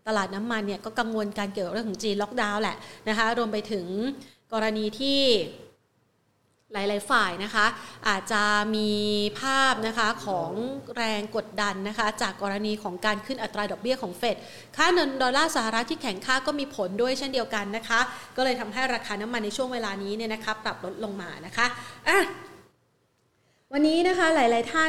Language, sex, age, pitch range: Thai, female, 30-49, 210-255 Hz